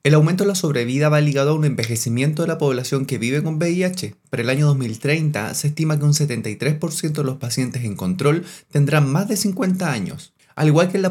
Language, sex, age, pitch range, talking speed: Spanish, male, 20-39, 125-165 Hz, 220 wpm